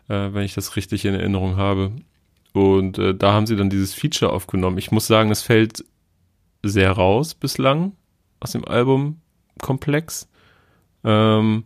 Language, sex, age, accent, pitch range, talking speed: German, male, 30-49, German, 95-115 Hz, 150 wpm